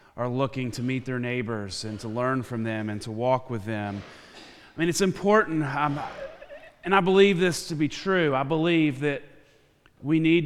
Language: English